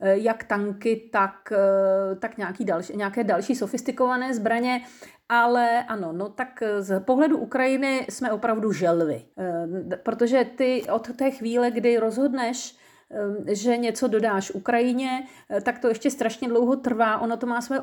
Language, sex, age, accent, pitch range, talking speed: Czech, female, 40-59, native, 210-260 Hz, 130 wpm